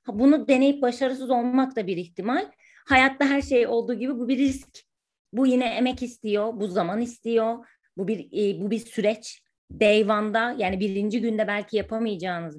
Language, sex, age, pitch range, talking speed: Turkish, female, 30-49, 200-270 Hz, 155 wpm